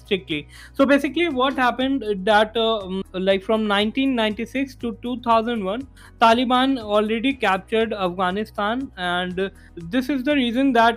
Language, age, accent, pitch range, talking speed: English, 20-39, Indian, 190-230 Hz, 120 wpm